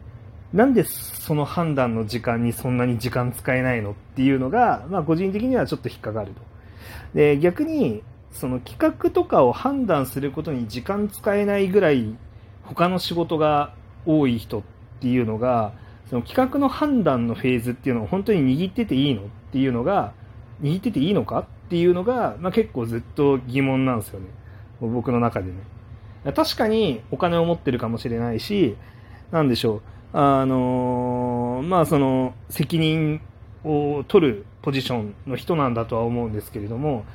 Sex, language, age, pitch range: male, Japanese, 40-59, 110-150 Hz